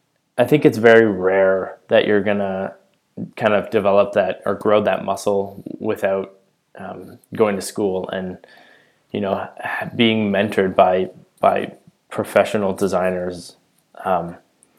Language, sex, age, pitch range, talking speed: English, male, 20-39, 95-105 Hz, 125 wpm